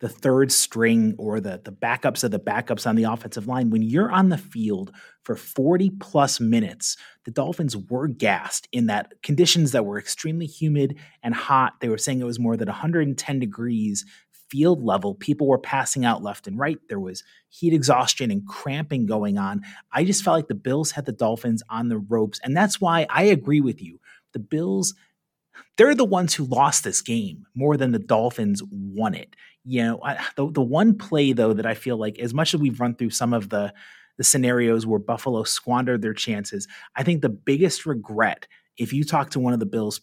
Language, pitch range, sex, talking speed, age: English, 115-160 Hz, male, 205 wpm, 30-49